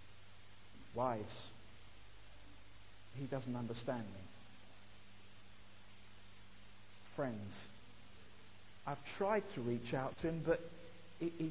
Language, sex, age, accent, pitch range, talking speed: English, male, 50-69, British, 100-145 Hz, 80 wpm